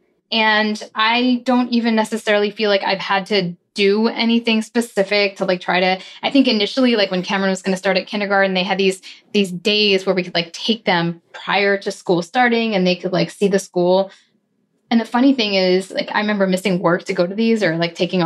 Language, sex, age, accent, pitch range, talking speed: English, female, 10-29, American, 185-230 Hz, 225 wpm